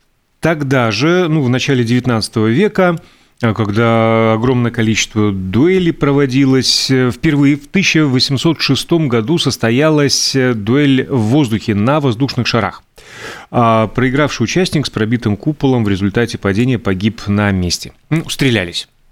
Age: 30-49